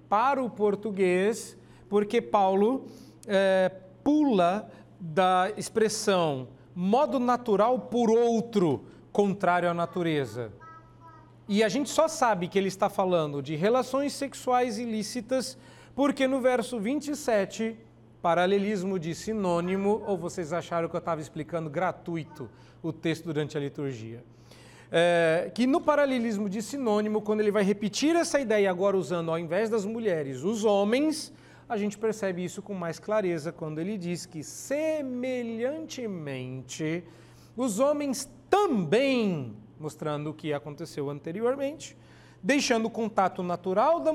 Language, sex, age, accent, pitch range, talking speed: Portuguese, male, 40-59, Brazilian, 170-245 Hz, 125 wpm